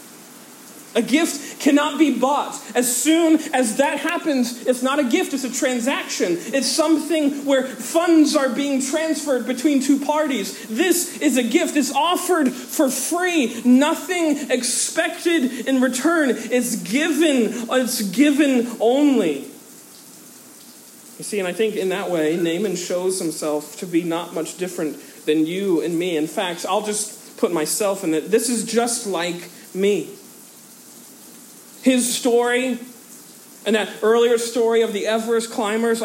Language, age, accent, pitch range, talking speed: English, 40-59, American, 230-295 Hz, 145 wpm